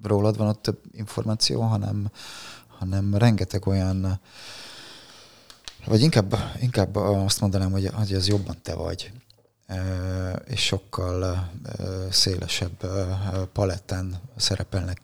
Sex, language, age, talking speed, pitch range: male, Hungarian, 30-49, 95 wpm, 90-105 Hz